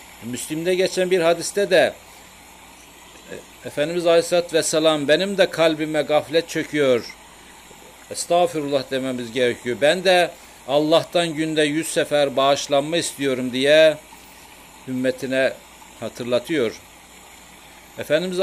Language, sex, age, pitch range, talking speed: Turkish, male, 60-79, 145-180 Hz, 90 wpm